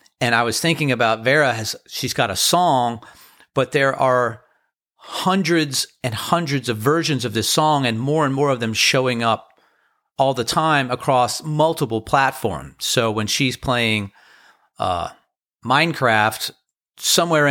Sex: male